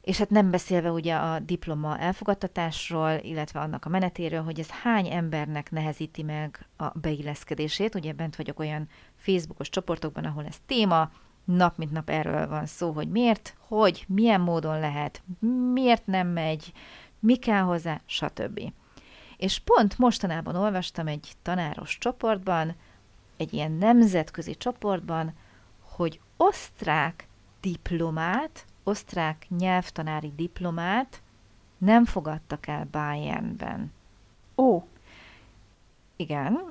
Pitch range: 155-210 Hz